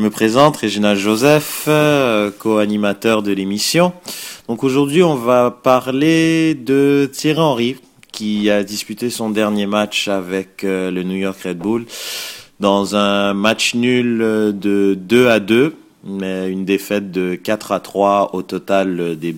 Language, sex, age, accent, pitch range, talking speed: French, male, 30-49, French, 95-125 Hz, 150 wpm